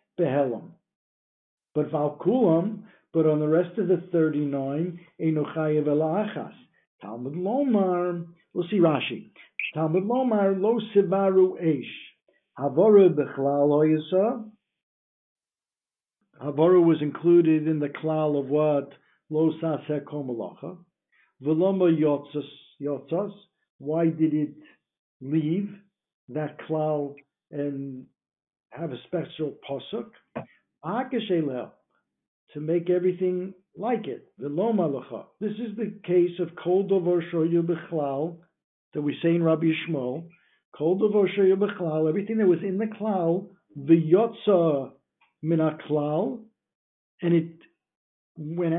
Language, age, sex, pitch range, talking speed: English, 60-79, male, 150-185 Hz, 105 wpm